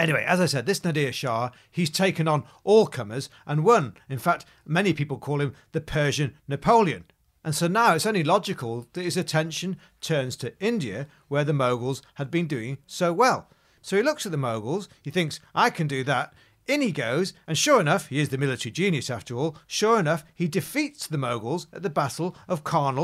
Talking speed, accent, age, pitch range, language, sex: 205 wpm, British, 40-59, 135-180 Hz, English, male